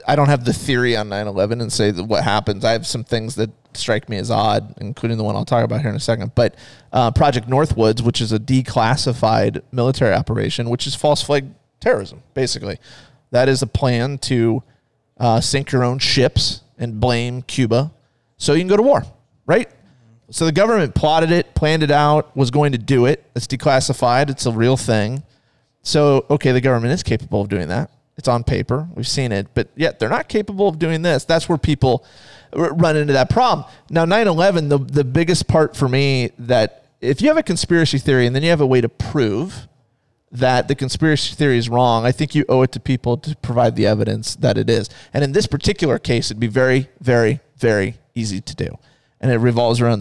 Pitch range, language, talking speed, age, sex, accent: 115-145 Hz, English, 215 wpm, 30-49, male, American